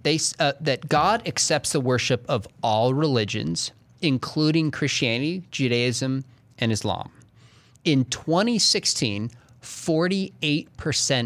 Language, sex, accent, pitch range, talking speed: English, male, American, 110-140 Hz, 90 wpm